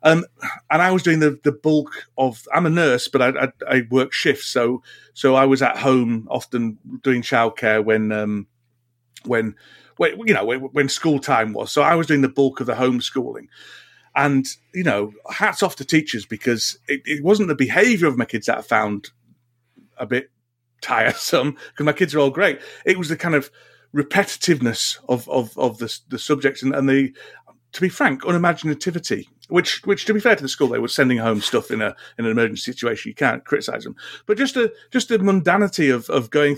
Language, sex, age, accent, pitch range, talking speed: English, male, 40-59, British, 125-170 Hz, 205 wpm